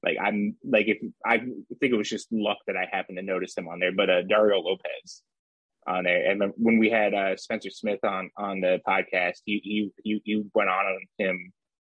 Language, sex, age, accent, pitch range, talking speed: English, male, 20-39, American, 95-110 Hz, 205 wpm